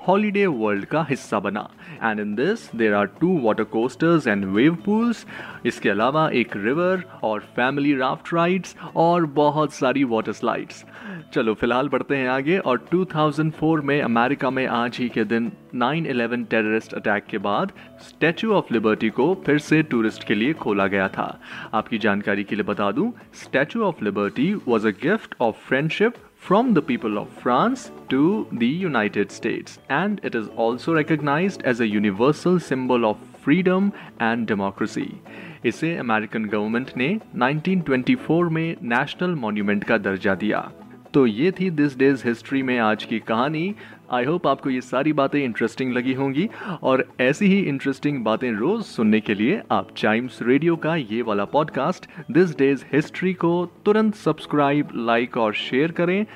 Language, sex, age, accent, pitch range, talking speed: Hindi, male, 30-49, native, 115-170 Hz, 165 wpm